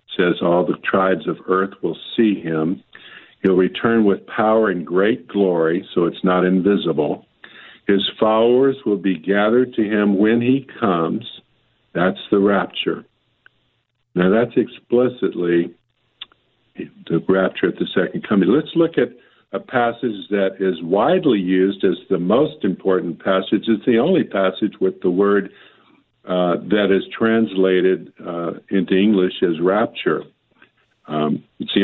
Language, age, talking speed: English, 50-69, 140 wpm